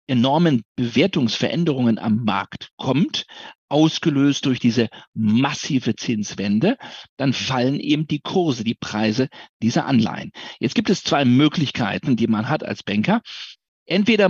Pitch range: 120-170 Hz